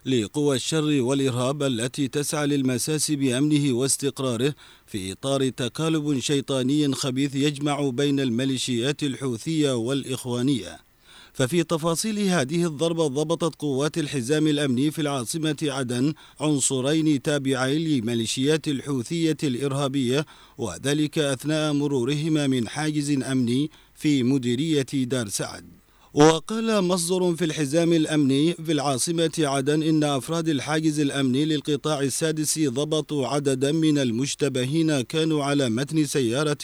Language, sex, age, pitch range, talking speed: Arabic, male, 40-59, 135-155 Hz, 110 wpm